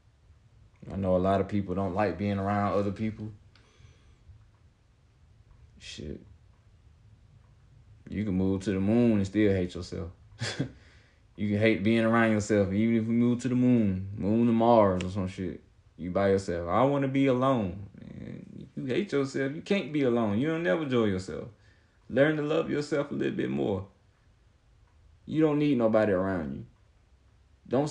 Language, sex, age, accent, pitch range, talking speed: English, male, 30-49, American, 90-110 Hz, 170 wpm